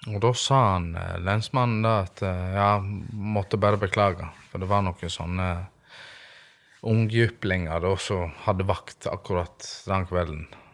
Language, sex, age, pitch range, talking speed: English, male, 20-39, 95-120 Hz, 145 wpm